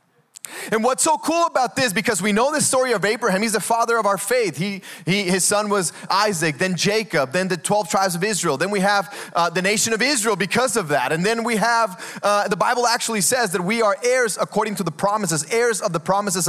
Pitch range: 210-310 Hz